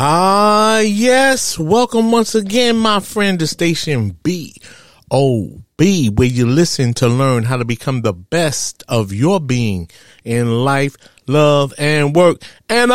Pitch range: 145-200 Hz